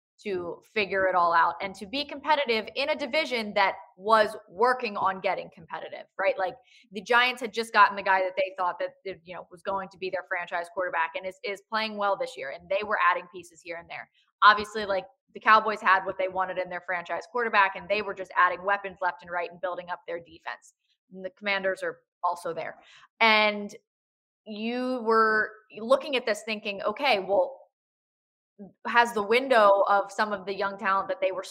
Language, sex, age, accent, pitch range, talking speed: English, female, 20-39, American, 185-230 Hz, 205 wpm